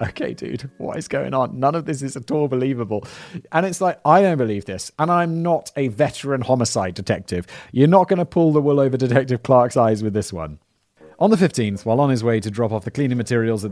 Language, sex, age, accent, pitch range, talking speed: English, male, 30-49, British, 105-150 Hz, 240 wpm